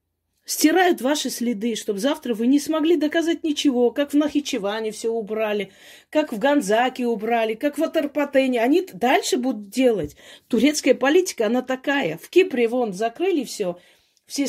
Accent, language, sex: native, Russian, female